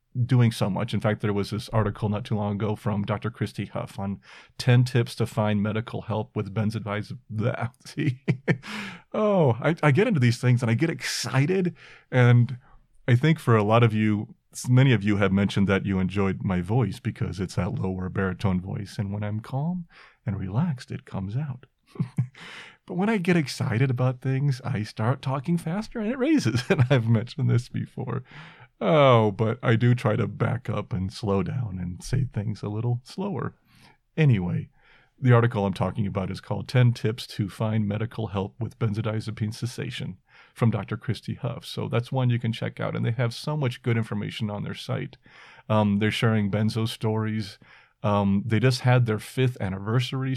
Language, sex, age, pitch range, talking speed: English, male, 40-59, 105-130 Hz, 185 wpm